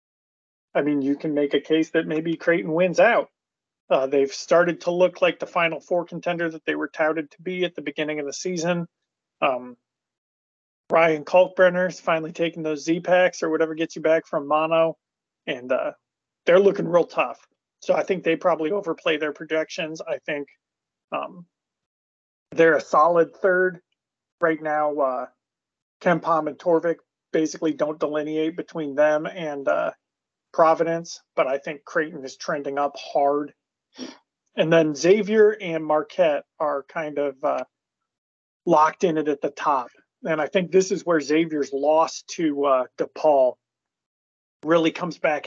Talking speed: 160 wpm